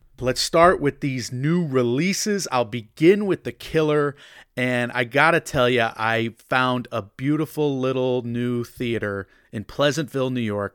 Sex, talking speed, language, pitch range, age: male, 155 wpm, English, 115-140 Hz, 30-49